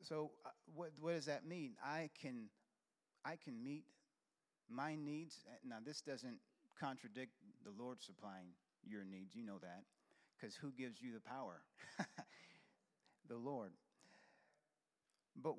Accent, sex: American, male